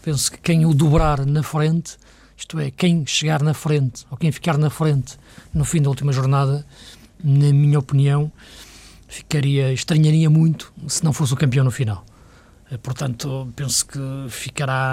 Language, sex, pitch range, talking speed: Portuguese, male, 130-155 Hz, 160 wpm